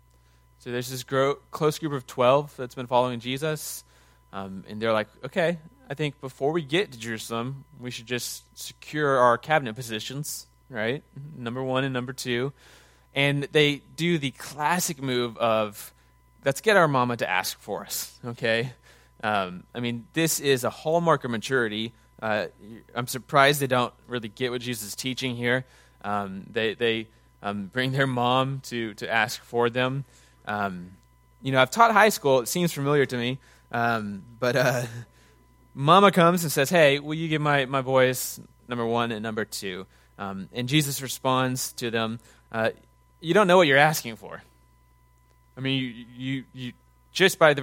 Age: 20-39